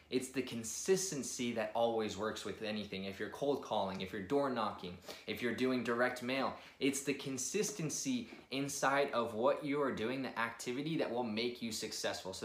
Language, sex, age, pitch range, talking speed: English, male, 20-39, 110-135 Hz, 185 wpm